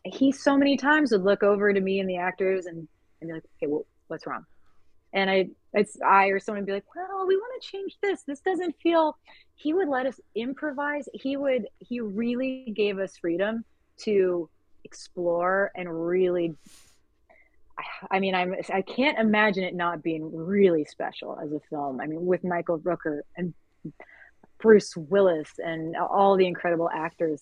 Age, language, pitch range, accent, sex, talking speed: 30-49, English, 160-200 Hz, American, female, 180 wpm